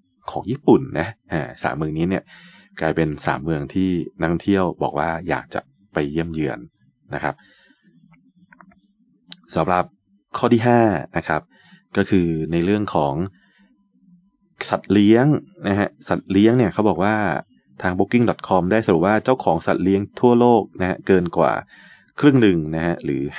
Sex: male